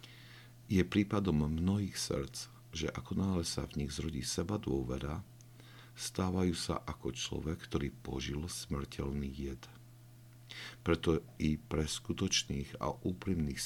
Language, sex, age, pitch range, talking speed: Slovak, male, 50-69, 70-115 Hz, 120 wpm